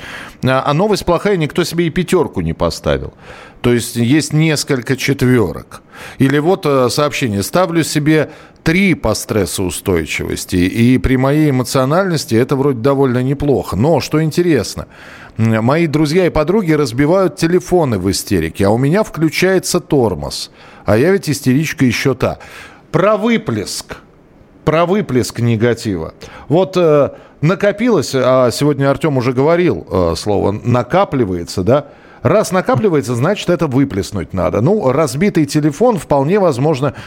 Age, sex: 40-59, male